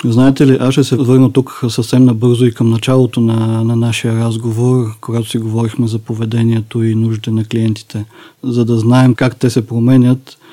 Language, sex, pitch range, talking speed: Bulgarian, male, 115-125 Hz, 180 wpm